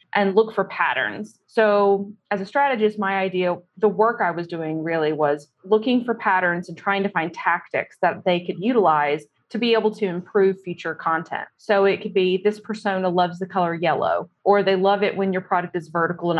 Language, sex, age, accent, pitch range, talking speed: English, female, 20-39, American, 175-205 Hz, 205 wpm